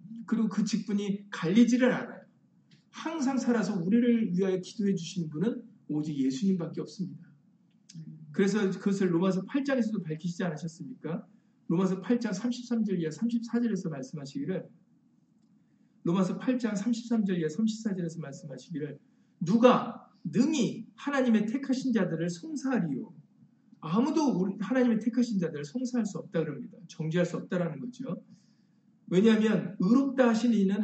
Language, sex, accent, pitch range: Korean, male, native, 180-230 Hz